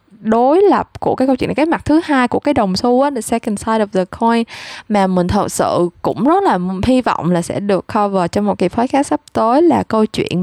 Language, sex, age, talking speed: Vietnamese, female, 20-39, 260 wpm